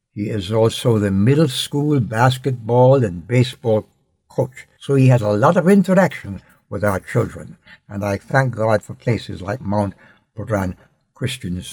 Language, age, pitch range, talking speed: English, 60-79, 105-145 Hz, 155 wpm